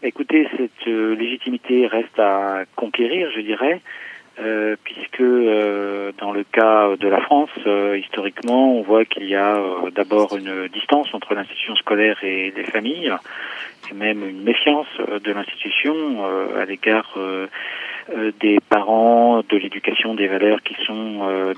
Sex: male